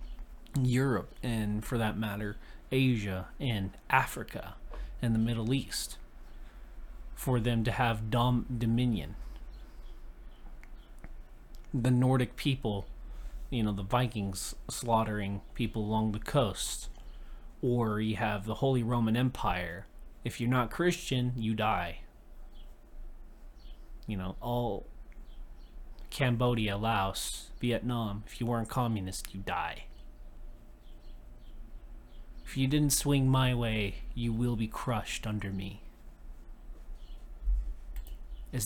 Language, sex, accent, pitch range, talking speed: English, male, American, 110-130 Hz, 105 wpm